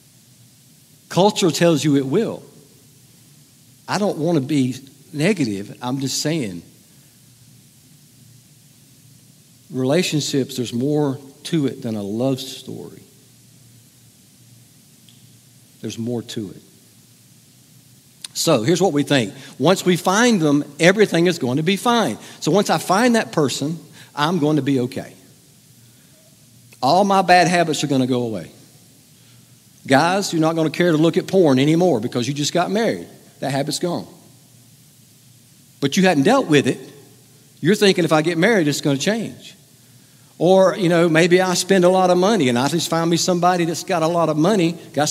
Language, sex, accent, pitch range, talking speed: English, male, American, 135-175 Hz, 160 wpm